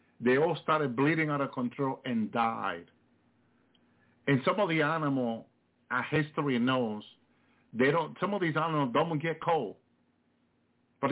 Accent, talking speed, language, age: American, 145 wpm, English, 50-69